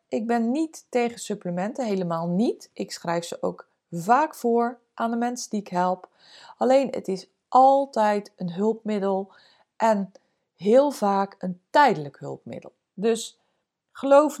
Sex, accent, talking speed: female, Dutch, 140 wpm